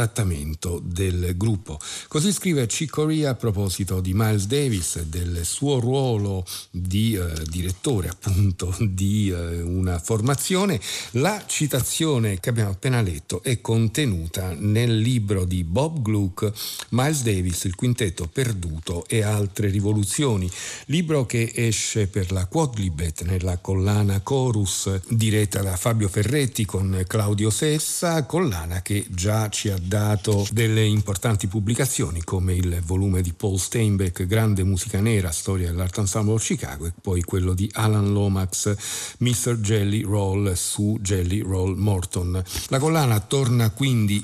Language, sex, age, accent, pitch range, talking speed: Italian, male, 50-69, native, 95-120 Hz, 135 wpm